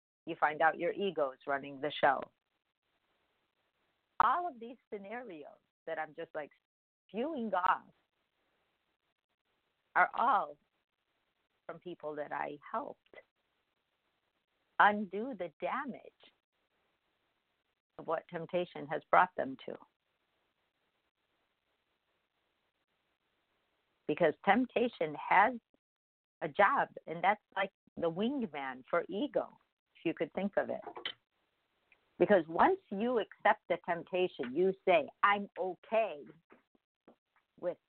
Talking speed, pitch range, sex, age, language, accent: 100 wpm, 160-205 Hz, female, 50-69, English, American